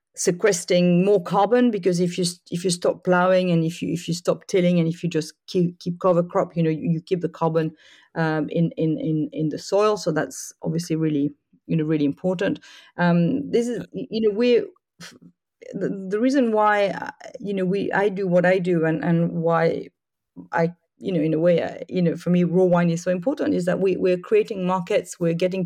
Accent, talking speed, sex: French, 215 wpm, female